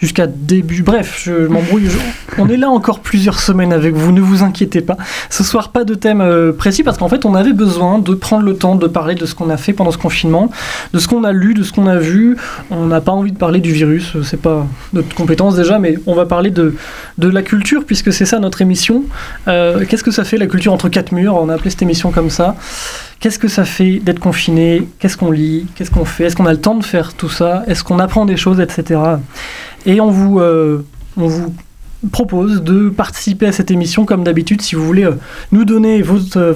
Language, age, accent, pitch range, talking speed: French, 20-39, French, 170-210 Hz, 235 wpm